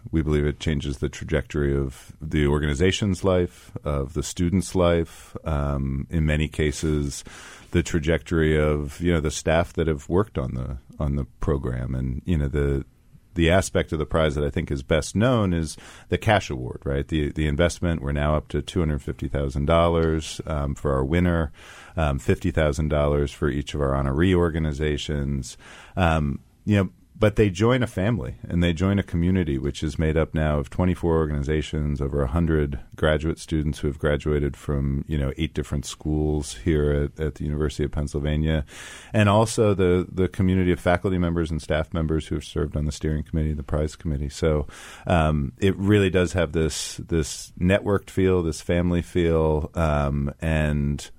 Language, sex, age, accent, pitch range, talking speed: English, male, 40-59, American, 75-85 Hz, 175 wpm